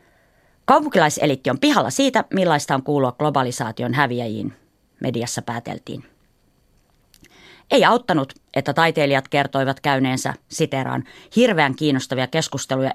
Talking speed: 95 wpm